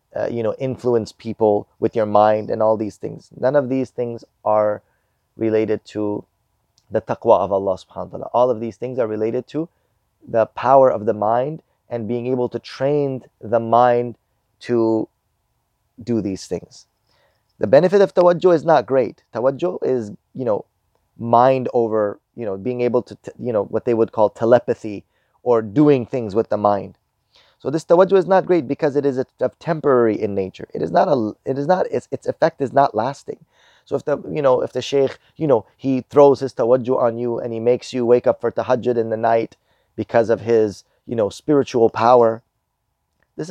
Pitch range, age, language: 110-135 Hz, 30-49, English